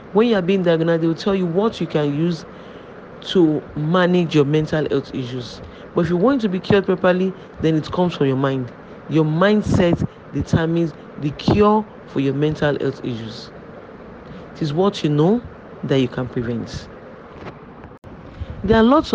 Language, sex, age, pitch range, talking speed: English, male, 40-59, 150-195 Hz, 170 wpm